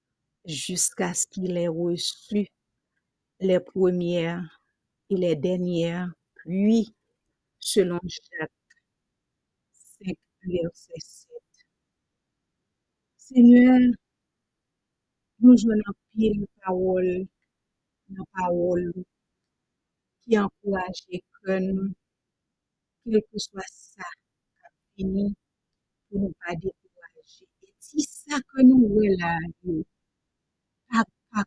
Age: 50-69